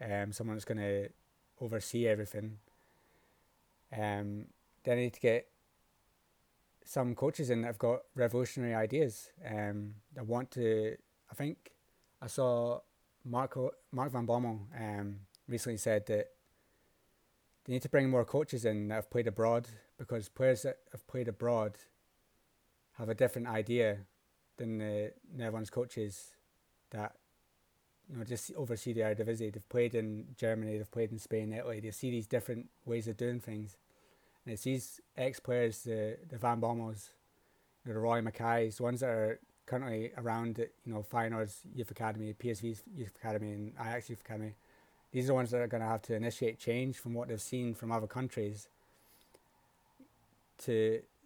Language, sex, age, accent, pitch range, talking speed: English, male, 20-39, British, 110-120 Hz, 160 wpm